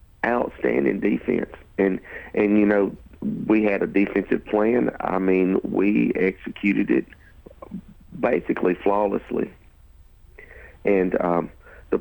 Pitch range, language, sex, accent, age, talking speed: 85-100 Hz, English, male, American, 50-69, 105 wpm